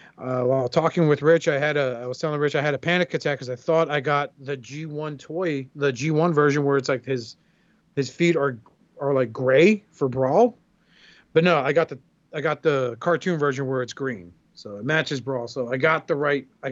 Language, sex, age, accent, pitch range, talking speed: English, male, 40-59, American, 140-170 Hz, 225 wpm